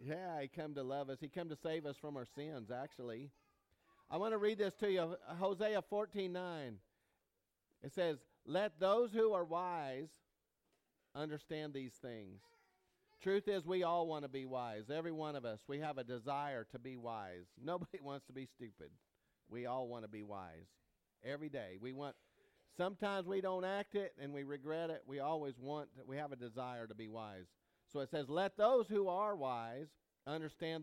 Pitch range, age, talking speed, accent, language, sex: 135-190 Hz, 40-59, 190 wpm, American, English, male